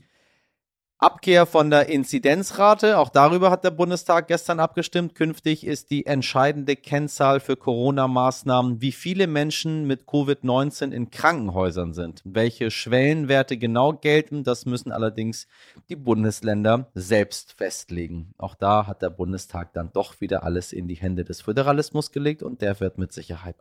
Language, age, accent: German, 30-49, German